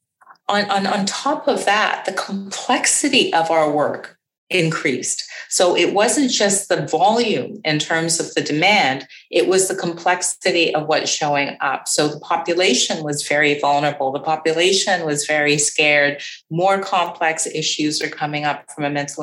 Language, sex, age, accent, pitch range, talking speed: English, female, 40-59, American, 150-185 Hz, 160 wpm